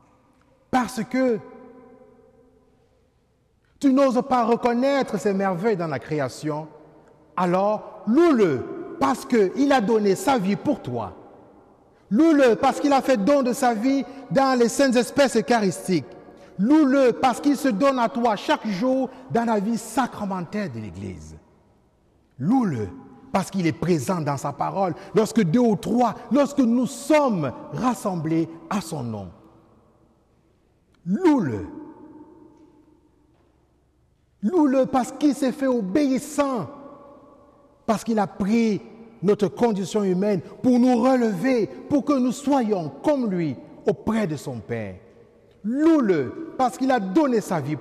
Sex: male